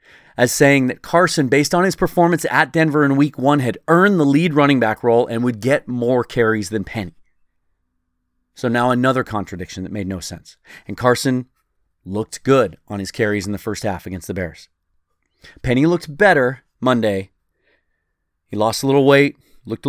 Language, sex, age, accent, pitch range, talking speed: English, male, 30-49, American, 105-140 Hz, 180 wpm